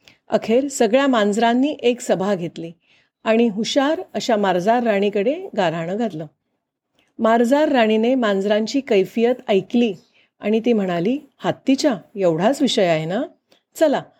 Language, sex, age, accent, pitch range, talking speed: Marathi, female, 40-59, native, 200-265 Hz, 115 wpm